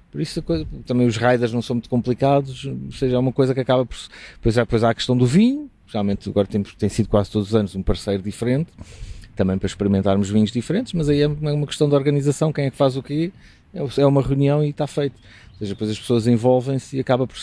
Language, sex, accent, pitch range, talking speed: Portuguese, male, Portuguese, 100-130 Hz, 240 wpm